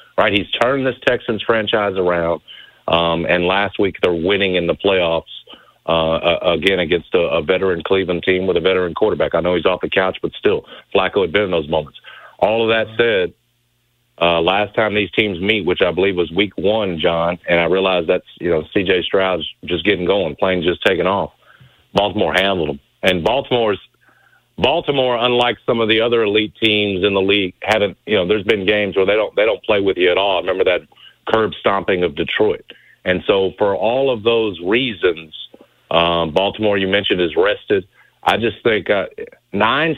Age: 50-69